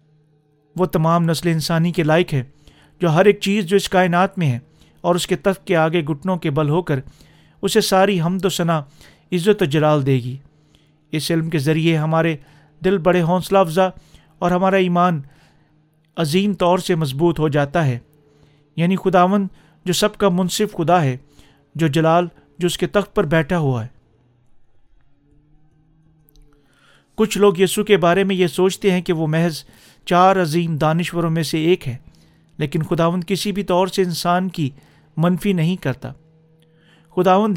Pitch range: 150-185 Hz